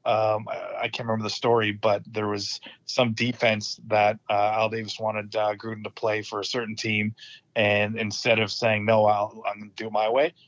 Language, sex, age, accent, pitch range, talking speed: English, male, 30-49, American, 105-120 Hz, 220 wpm